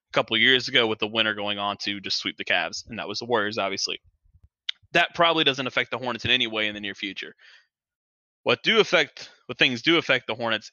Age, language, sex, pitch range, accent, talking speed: 20-39, English, male, 110-135 Hz, American, 235 wpm